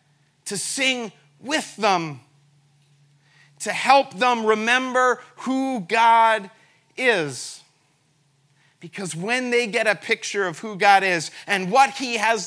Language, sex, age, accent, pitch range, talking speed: English, male, 40-59, American, 150-220 Hz, 120 wpm